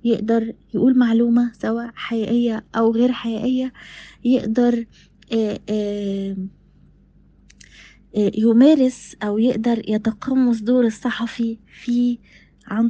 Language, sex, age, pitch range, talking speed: Arabic, female, 20-39, 215-245 Hz, 80 wpm